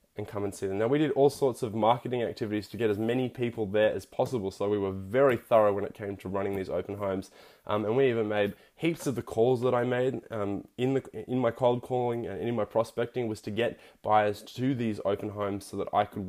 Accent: Australian